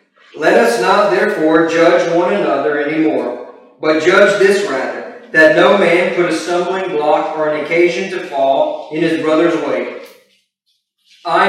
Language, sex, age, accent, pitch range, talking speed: English, male, 40-59, American, 150-190 Hz, 155 wpm